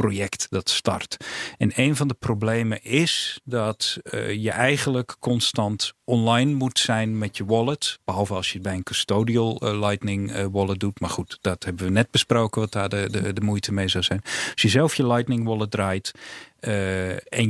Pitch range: 100-125 Hz